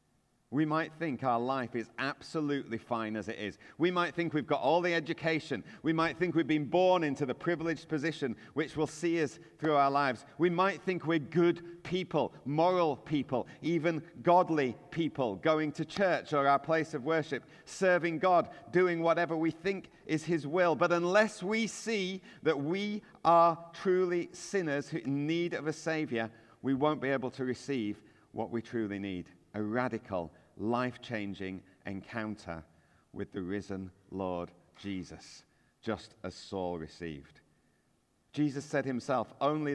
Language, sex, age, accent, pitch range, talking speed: English, male, 40-59, British, 115-165 Hz, 160 wpm